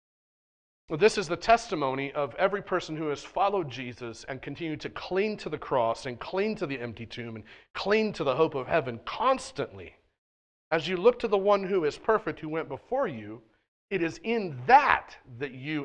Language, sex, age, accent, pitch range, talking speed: English, male, 40-59, American, 120-175 Hz, 195 wpm